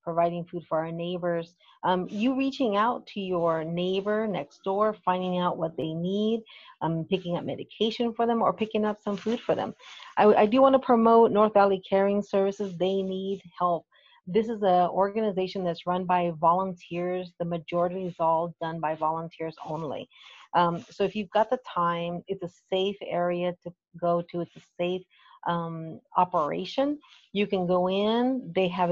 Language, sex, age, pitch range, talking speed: English, female, 40-59, 175-205 Hz, 180 wpm